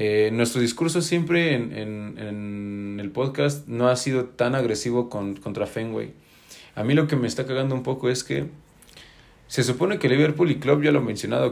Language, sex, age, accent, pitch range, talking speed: Spanish, male, 30-49, Mexican, 110-140 Hz, 200 wpm